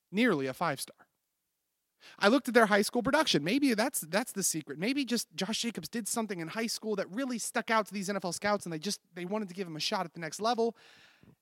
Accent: American